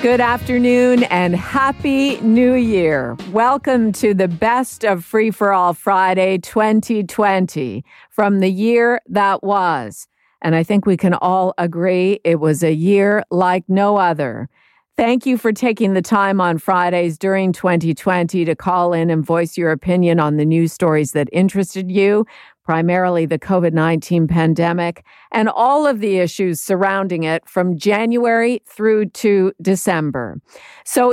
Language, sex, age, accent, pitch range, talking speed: English, female, 50-69, American, 170-215 Hz, 145 wpm